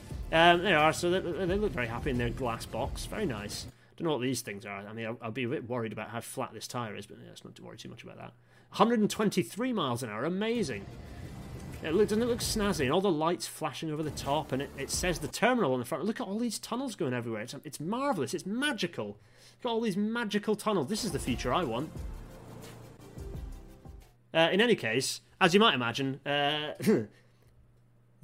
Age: 30-49